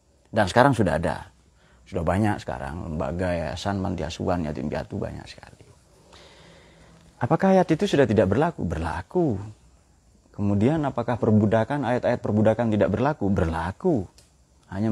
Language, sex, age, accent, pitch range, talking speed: Indonesian, male, 30-49, native, 85-130 Hz, 120 wpm